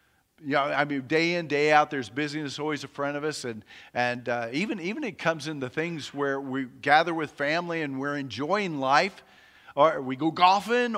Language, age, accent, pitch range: English, 50-69, American, 130-165 Hz